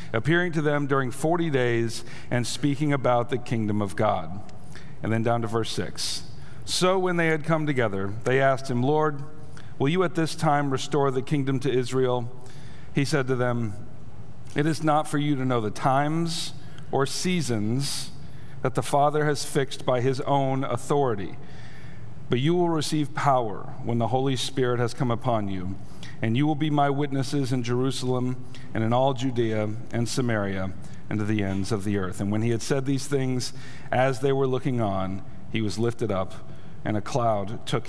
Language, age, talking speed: English, 50-69, 185 wpm